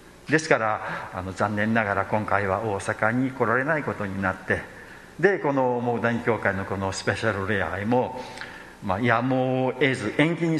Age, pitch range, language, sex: 50-69, 95-125 Hz, Japanese, male